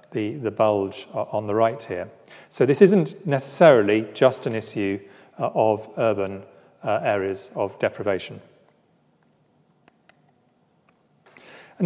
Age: 40-59